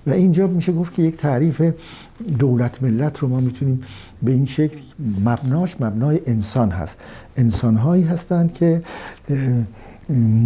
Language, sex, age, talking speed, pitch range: Persian, male, 60-79, 130 wpm, 115-150 Hz